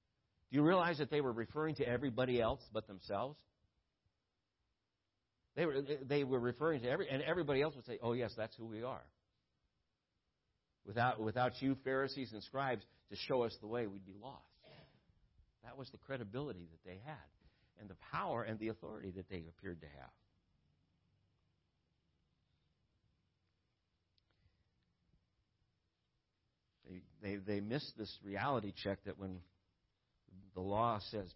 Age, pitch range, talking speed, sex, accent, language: 60-79, 95-130 Hz, 140 wpm, male, American, English